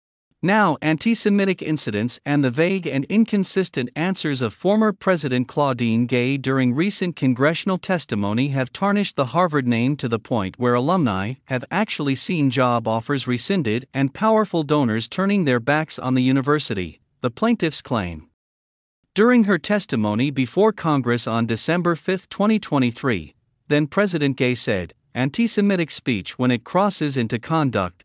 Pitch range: 115-170 Hz